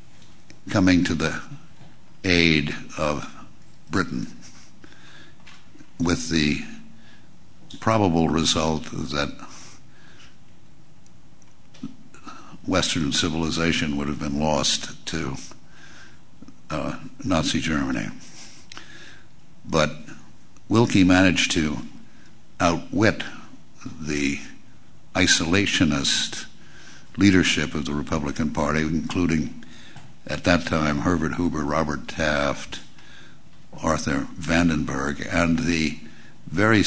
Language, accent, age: English, American, 60-79